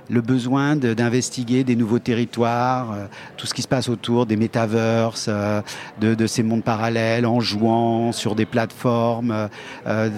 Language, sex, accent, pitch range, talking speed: French, male, French, 115-125 Hz, 165 wpm